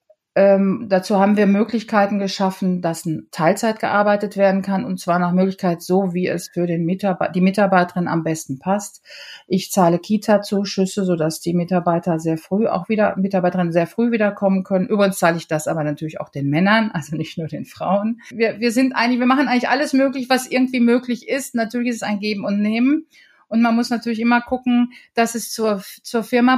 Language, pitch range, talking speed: German, 190-230 Hz, 195 wpm